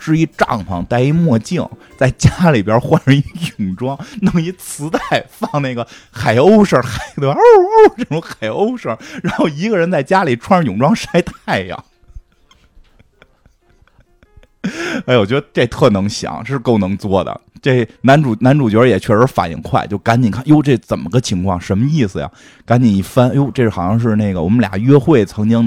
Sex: male